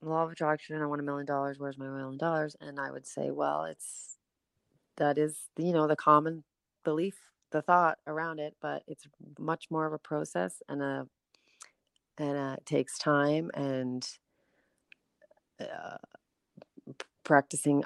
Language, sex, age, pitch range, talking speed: English, female, 30-49, 140-170 Hz, 155 wpm